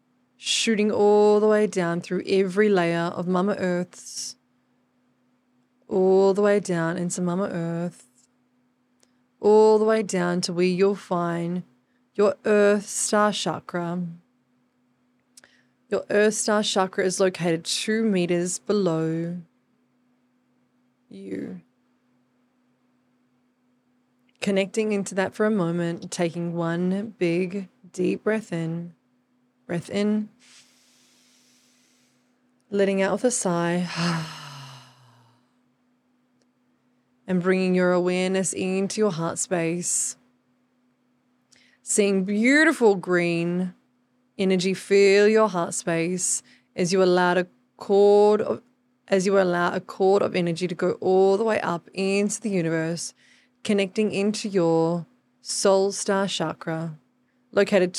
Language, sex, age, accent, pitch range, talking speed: English, female, 20-39, Australian, 175-235 Hz, 110 wpm